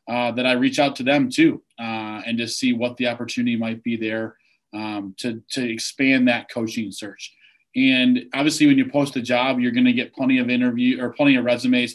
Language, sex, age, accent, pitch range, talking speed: English, male, 30-49, American, 120-170 Hz, 220 wpm